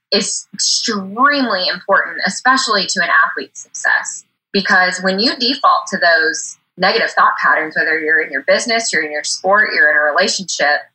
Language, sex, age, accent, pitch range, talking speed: English, female, 20-39, American, 185-265 Hz, 165 wpm